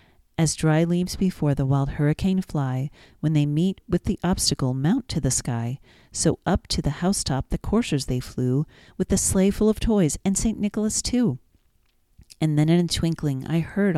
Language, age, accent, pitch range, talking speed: English, 40-59, American, 140-190 Hz, 190 wpm